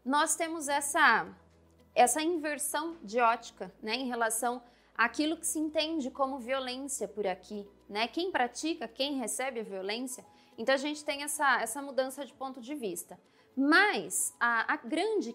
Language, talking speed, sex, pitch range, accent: Portuguese, 155 wpm, female, 225-300 Hz, Brazilian